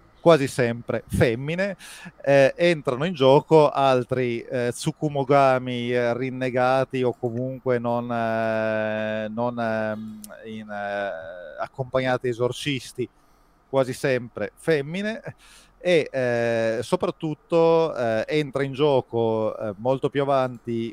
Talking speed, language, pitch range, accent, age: 105 wpm, Italian, 115-140 Hz, native, 30-49